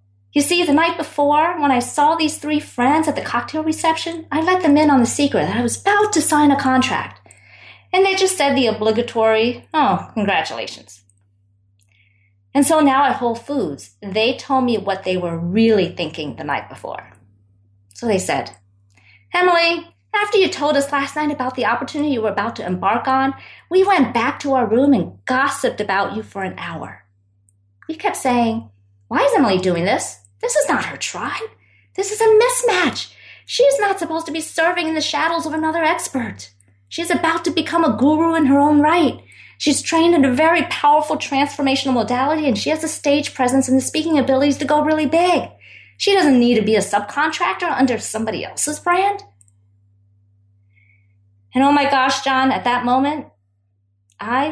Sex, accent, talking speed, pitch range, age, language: female, American, 185 wpm, 190-310 Hz, 40-59, English